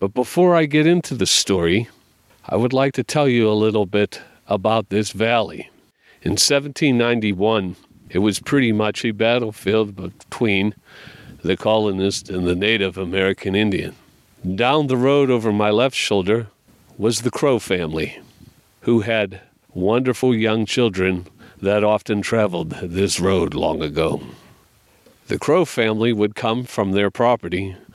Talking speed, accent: 140 wpm, American